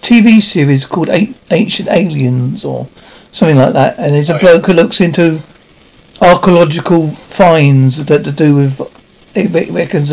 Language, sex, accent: English, male, British